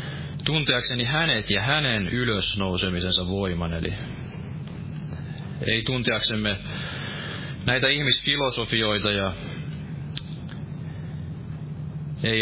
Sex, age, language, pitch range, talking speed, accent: male, 20-39, Finnish, 105-145 Hz, 65 wpm, native